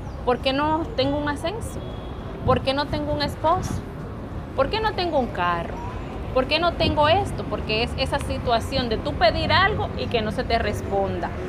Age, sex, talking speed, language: 30-49, female, 195 wpm, Spanish